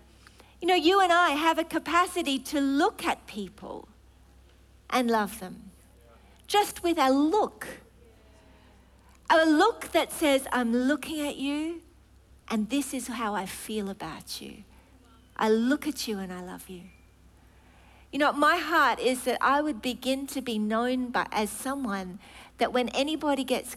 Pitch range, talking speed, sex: 220-310 Hz, 160 wpm, female